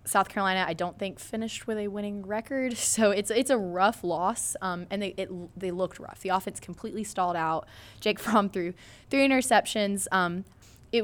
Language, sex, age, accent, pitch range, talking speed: English, female, 20-39, American, 180-220 Hz, 190 wpm